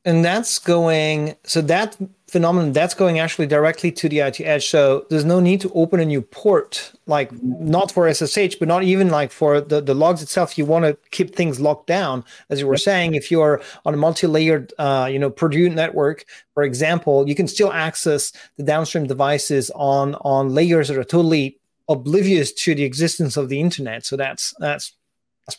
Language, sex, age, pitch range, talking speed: English, male, 30-49, 145-185 Hz, 195 wpm